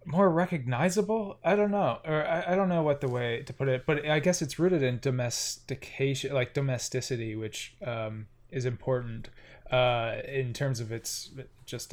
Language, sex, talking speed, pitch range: English, male, 175 wpm, 115-140 Hz